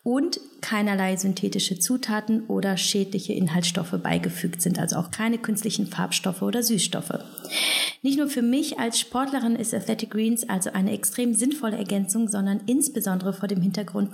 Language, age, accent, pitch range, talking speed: German, 30-49, German, 180-225 Hz, 150 wpm